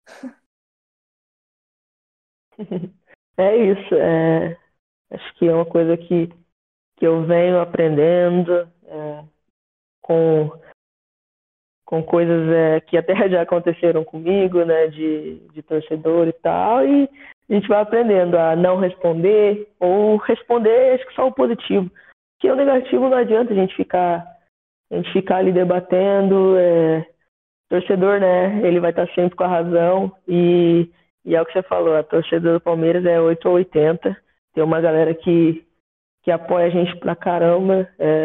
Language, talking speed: Portuguese, 145 wpm